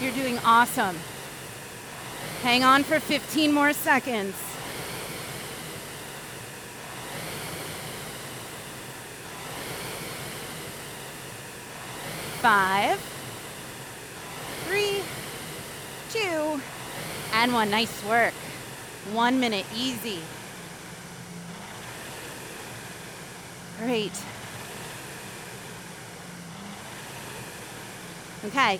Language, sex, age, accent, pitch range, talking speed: English, female, 30-49, American, 180-275 Hz, 45 wpm